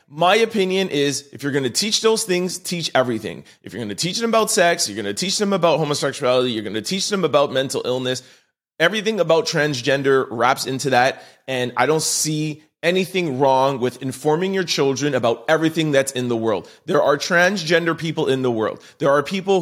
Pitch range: 135-190 Hz